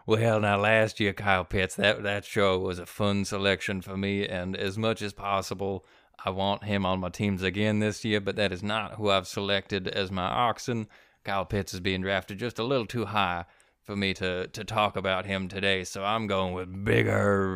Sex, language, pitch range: male, English, 100-120 Hz